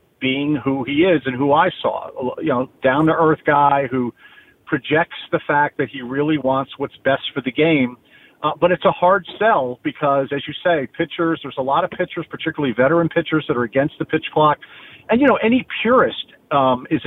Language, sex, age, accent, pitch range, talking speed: English, male, 50-69, American, 145-180 Hz, 205 wpm